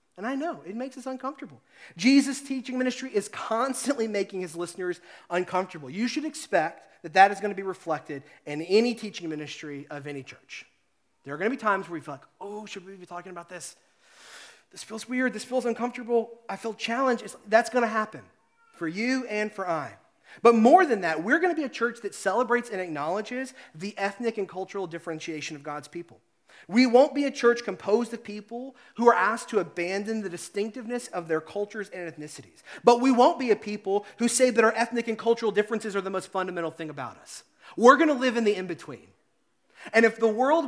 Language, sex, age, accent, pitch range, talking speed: English, male, 30-49, American, 165-230 Hz, 210 wpm